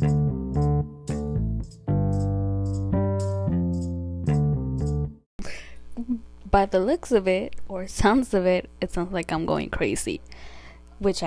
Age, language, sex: 10-29, English, female